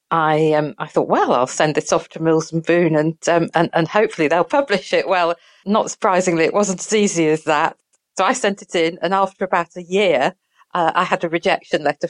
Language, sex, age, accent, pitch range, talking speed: English, female, 40-59, British, 155-215 Hz, 230 wpm